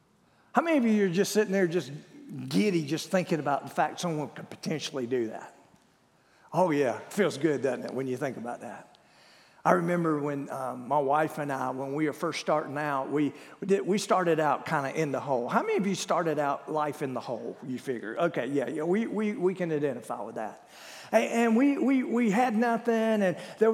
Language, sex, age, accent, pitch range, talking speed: English, male, 50-69, American, 155-235 Hz, 215 wpm